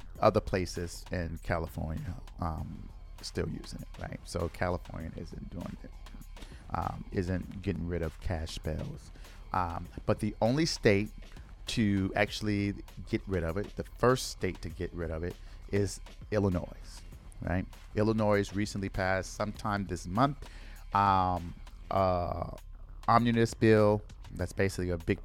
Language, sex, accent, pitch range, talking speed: English, male, American, 90-105 Hz, 135 wpm